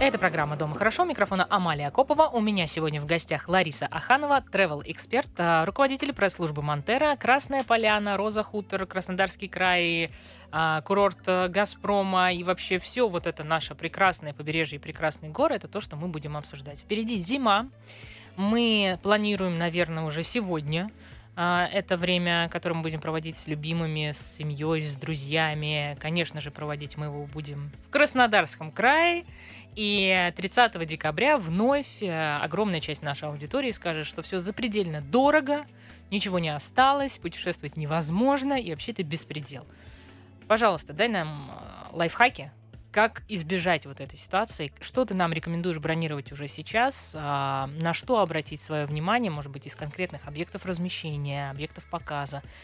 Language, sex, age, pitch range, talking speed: Russian, female, 20-39, 150-205 Hz, 140 wpm